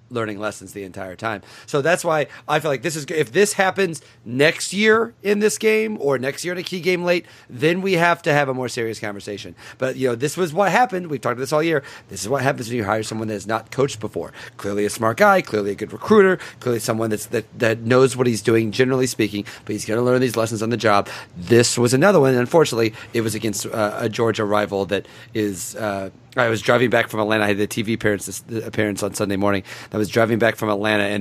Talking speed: 255 wpm